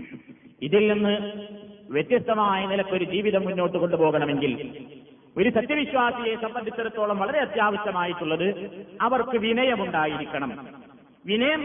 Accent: native